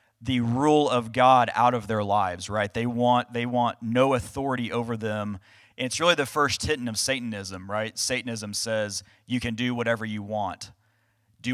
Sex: male